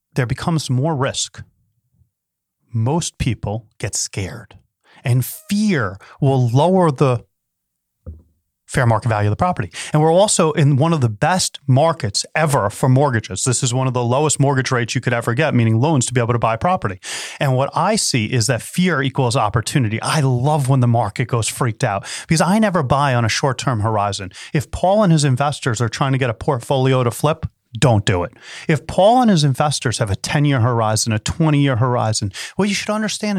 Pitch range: 120-165 Hz